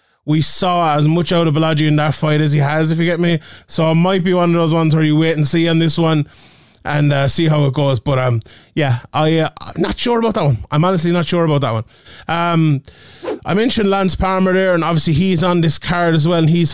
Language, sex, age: English, male, 20-39